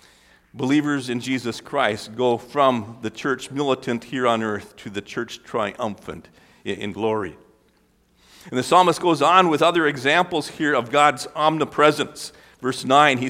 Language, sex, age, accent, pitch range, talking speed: English, male, 50-69, American, 120-150 Hz, 150 wpm